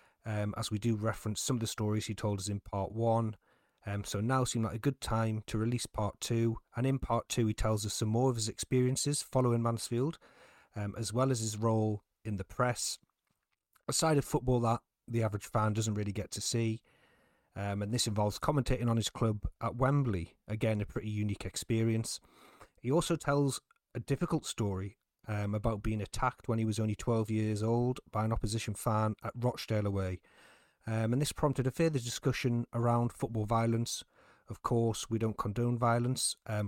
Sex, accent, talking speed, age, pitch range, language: male, British, 195 wpm, 40-59, 105-120 Hz, English